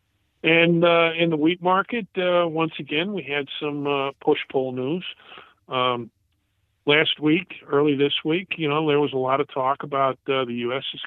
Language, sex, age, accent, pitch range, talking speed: English, male, 50-69, American, 120-160 Hz, 185 wpm